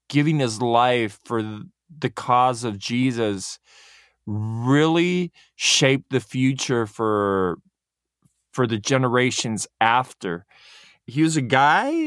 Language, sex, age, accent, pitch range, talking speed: English, male, 20-39, American, 115-150 Hz, 105 wpm